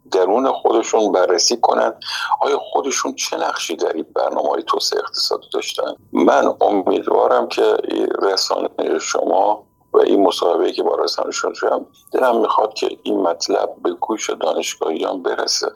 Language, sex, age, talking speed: Persian, male, 50-69, 140 wpm